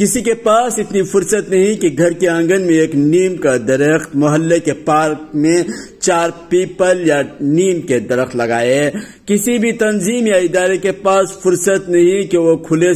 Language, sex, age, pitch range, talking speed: Urdu, male, 50-69, 150-195 Hz, 175 wpm